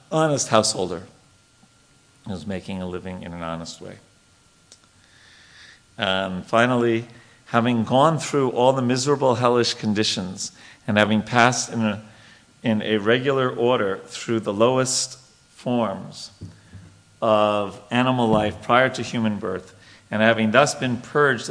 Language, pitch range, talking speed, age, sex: English, 105-125 Hz, 125 wpm, 50-69, male